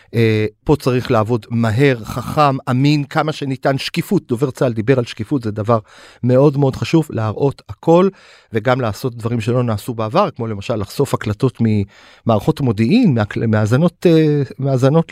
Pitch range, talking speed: 110-140 Hz, 135 wpm